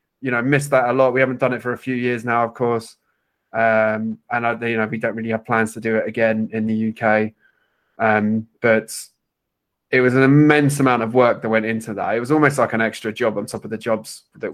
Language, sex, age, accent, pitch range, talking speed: English, male, 20-39, British, 110-120 Hz, 245 wpm